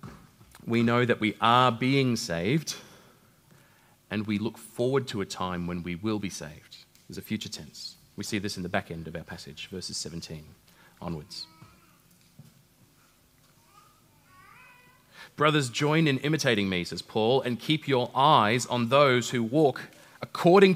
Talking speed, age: 150 wpm, 30-49